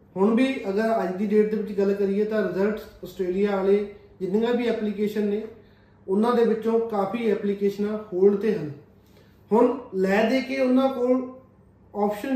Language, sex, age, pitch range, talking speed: Punjabi, male, 30-49, 195-230 Hz, 160 wpm